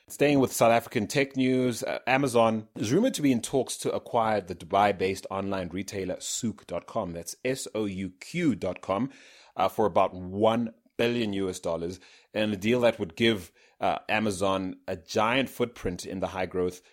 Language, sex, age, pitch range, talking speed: English, male, 30-49, 95-110 Hz, 150 wpm